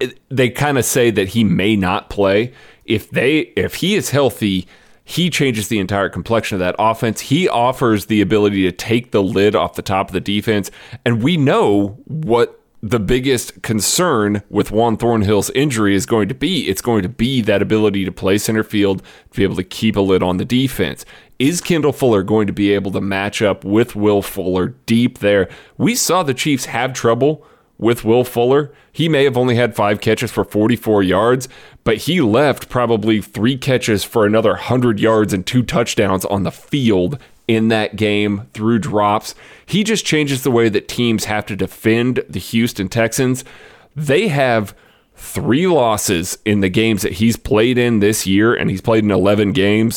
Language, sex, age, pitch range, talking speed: English, male, 30-49, 100-120 Hz, 190 wpm